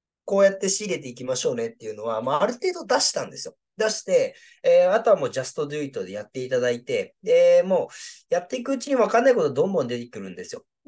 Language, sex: Japanese, male